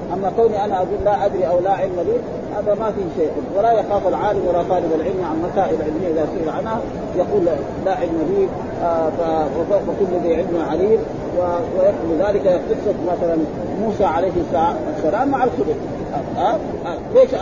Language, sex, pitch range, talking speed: Arabic, male, 180-230 Hz, 160 wpm